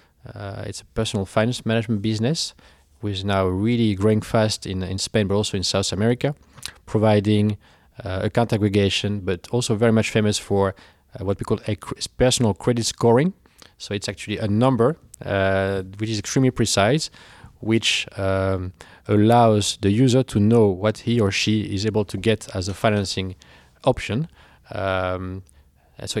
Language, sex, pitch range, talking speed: Dutch, male, 95-115 Hz, 165 wpm